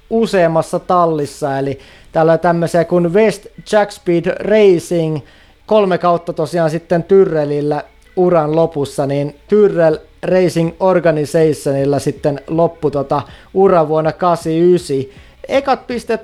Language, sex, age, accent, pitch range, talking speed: Finnish, male, 30-49, native, 155-195 Hz, 105 wpm